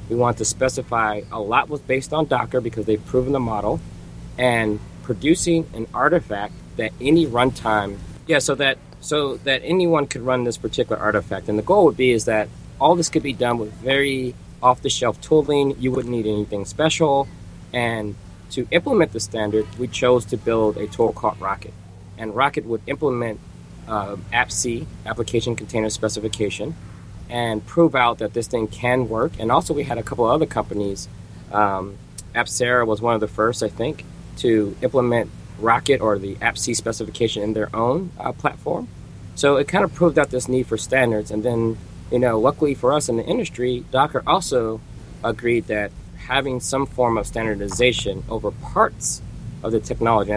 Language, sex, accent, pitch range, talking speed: English, male, American, 105-130 Hz, 180 wpm